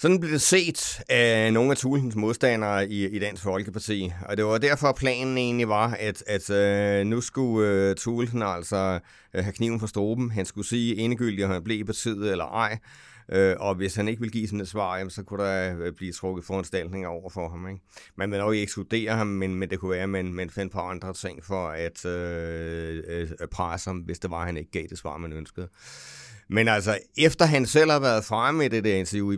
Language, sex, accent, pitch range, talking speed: English, male, Danish, 95-115 Hz, 230 wpm